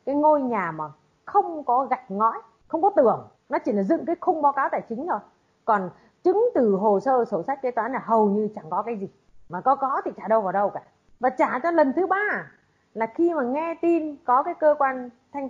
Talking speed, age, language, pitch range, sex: 245 wpm, 20-39, Vietnamese, 200-300 Hz, female